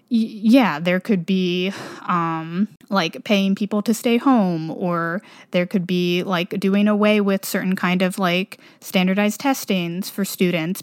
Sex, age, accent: female, 20-39, American